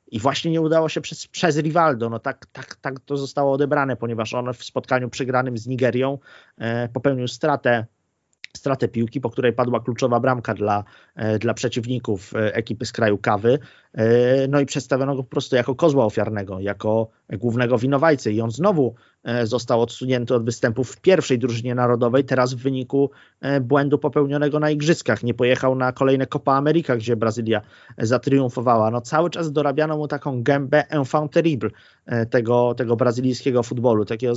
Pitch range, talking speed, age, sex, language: 120-145 Hz, 155 wpm, 30-49, male, Polish